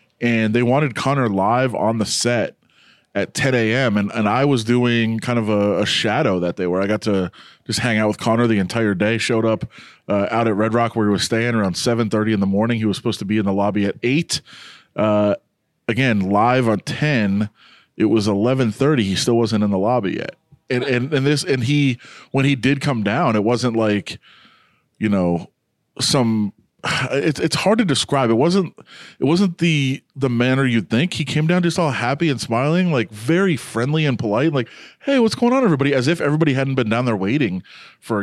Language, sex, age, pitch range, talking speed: English, male, 30-49, 110-145 Hz, 215 wpm